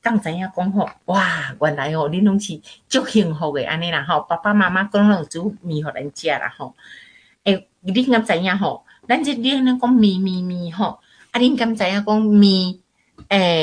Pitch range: 155-215 Hz